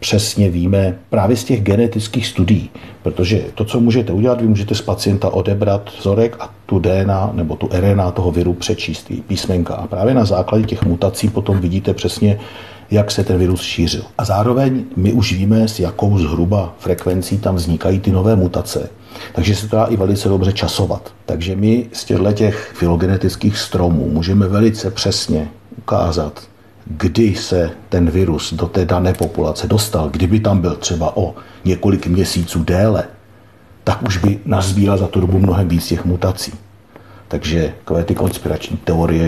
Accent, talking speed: native, 160 wpm